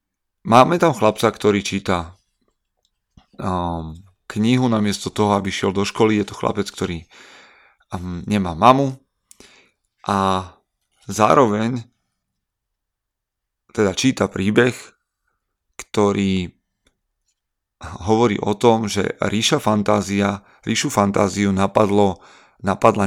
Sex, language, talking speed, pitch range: male, Slovak, 95 wpm, 95-110 Hz